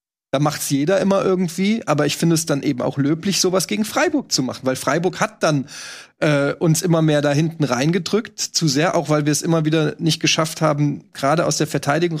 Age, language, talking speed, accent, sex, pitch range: 30-49, German, 220 wpm, German, male, 145-175 Hz